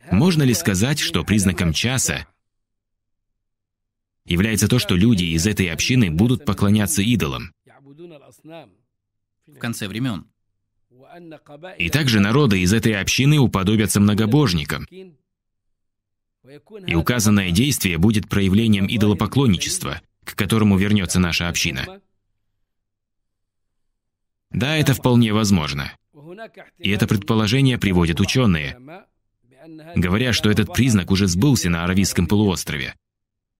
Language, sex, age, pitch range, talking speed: Russian, male, 20-39, 95-120 Hz, 100 wpm